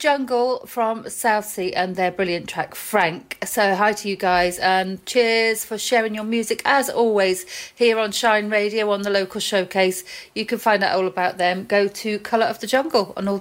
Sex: female